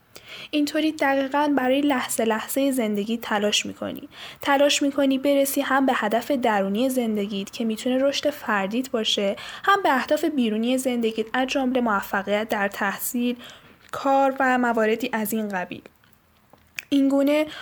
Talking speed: 125 wpm